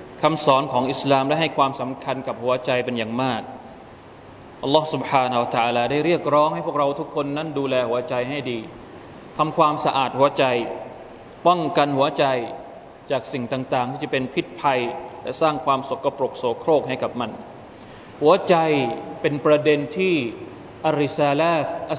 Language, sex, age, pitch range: Thai, male, 20-39, 135-165 Hz